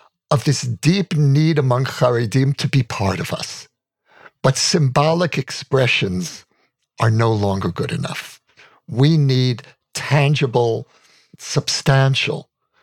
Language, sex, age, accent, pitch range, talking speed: English, male, 60-79, American, 120-155 Hz, 110 wpm